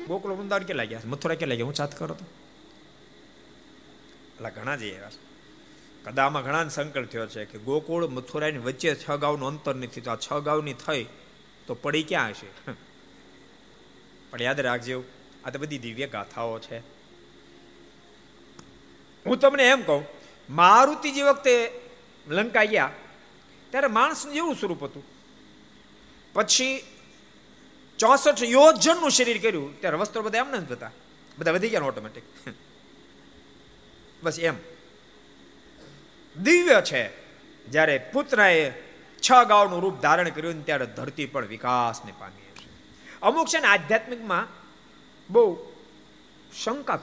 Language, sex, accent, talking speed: Gujarati, male, native, 55 wpm